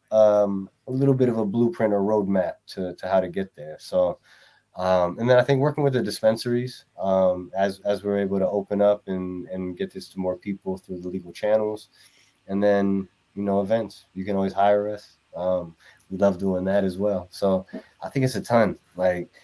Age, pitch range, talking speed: 20-39, 95-110 Hz, 210 wpm